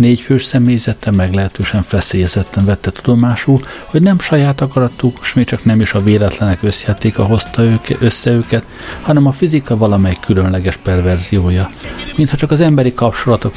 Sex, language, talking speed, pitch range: male, Hungarian, 135 wpm, 100-125 Hz